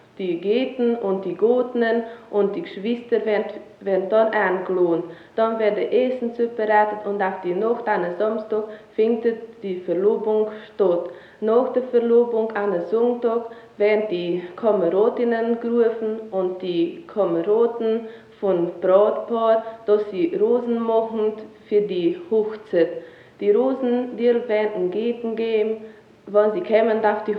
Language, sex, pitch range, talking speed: German, female, 190-235 Hz, 125 wpm